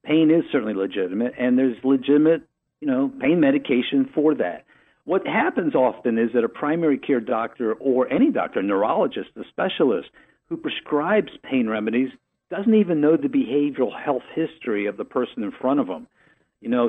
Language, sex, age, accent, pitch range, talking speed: English, male, 50-69, American, 120-195 Hz, 170 wpm